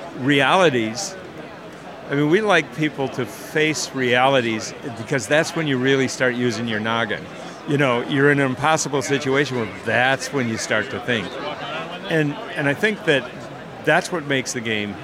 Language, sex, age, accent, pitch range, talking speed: English, male, 60-79, American, 120-150 Hz, 170 wpm